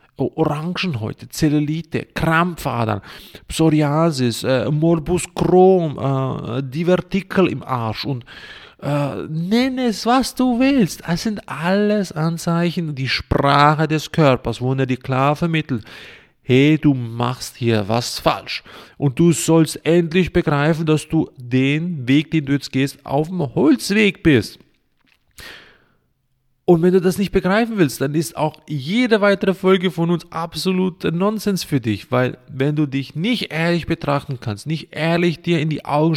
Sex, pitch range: male, 135-180 Hz